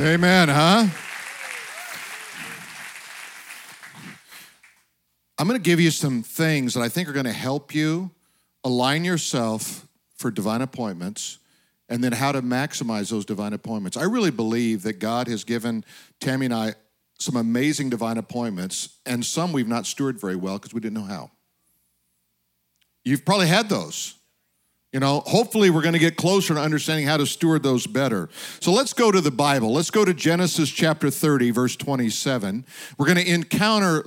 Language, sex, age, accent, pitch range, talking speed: English, male, 50-69, American, 120-170 Hz, 165 wpm